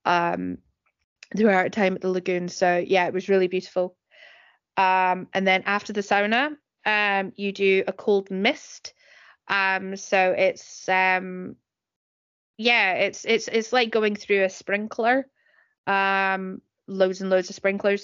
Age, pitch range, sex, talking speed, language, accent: 20-39, 185-205 Hz, female, 145 wpm, English, British